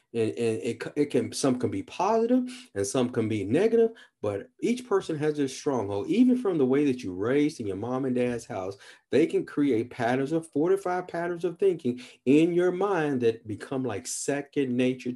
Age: 40-59